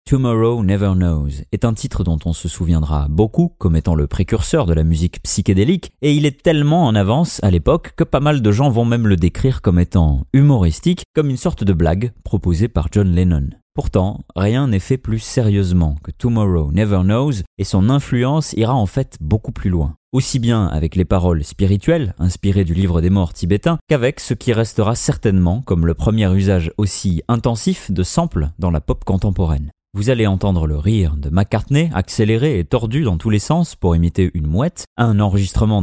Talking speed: 195 wpm